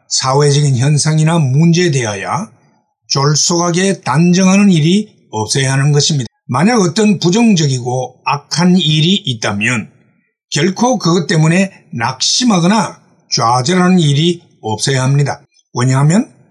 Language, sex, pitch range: Korean, male, 140-190 Hz